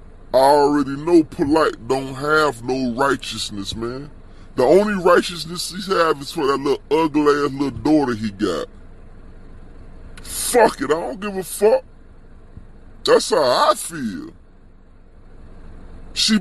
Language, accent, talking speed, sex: English, American, 130 wpm, female